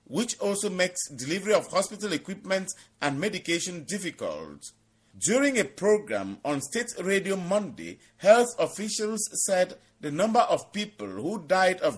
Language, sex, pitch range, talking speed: English, male, 155-210 Hz, 135 wpm